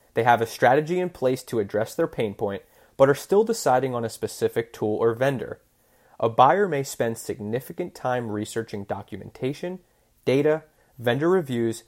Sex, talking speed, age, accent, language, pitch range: male, 160 wpm, 30-49, American, English, 110-150 Hz